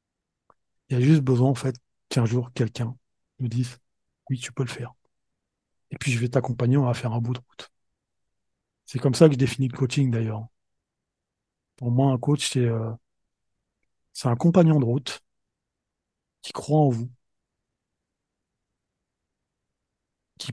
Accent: French